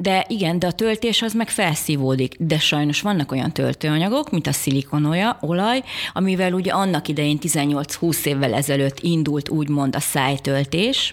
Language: Hungarian